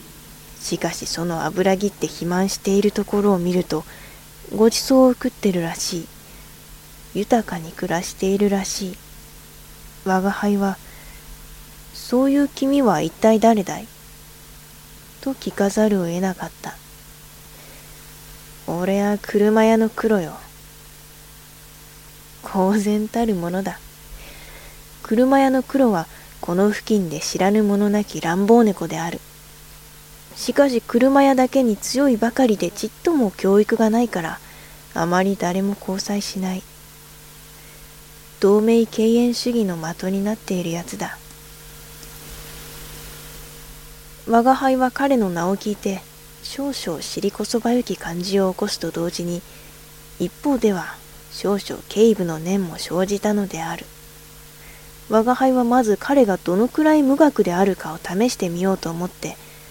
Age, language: 20-39, English